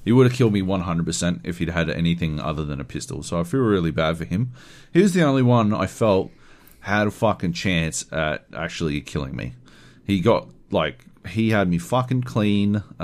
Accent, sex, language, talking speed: Australian, male, English, 200 wpm